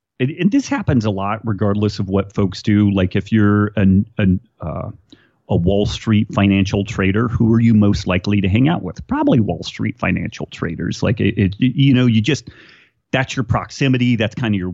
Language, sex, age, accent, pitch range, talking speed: English, male, 30-49, American, 95-115 Hz, 205 wpm